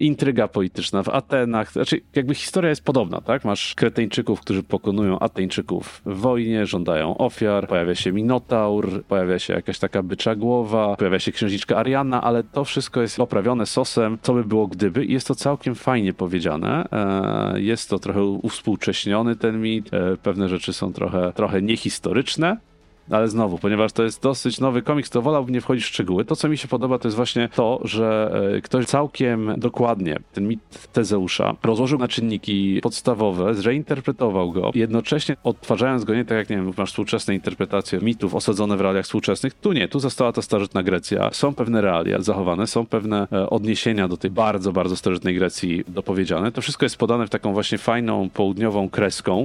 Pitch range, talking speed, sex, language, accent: 100-120 Hz, 175 wpm, male, Polish, native